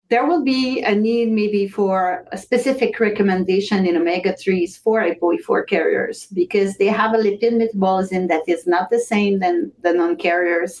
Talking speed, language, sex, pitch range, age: 165 wpm, English, female, 180-230 Hz, 40-59